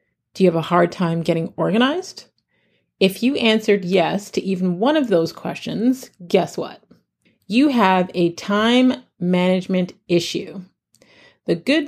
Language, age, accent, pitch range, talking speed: English, 40-59, American, 175-225 Hz, 140 wpm